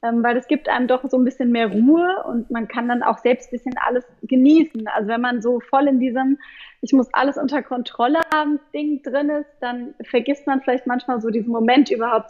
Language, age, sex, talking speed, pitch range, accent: German, 20-39, female, 220 wpm, 240-285 Hz, German